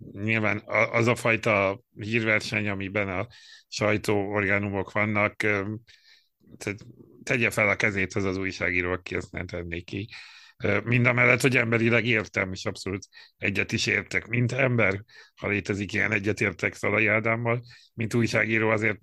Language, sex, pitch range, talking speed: Hungarian, male, 100-115 Hz, 135 wpm